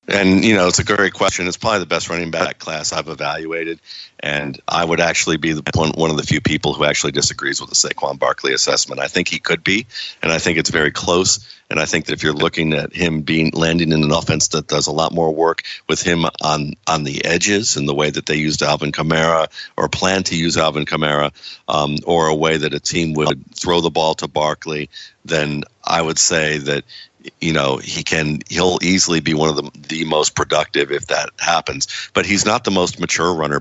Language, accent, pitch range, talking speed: English, American, 75-85 Hz, 230 wpm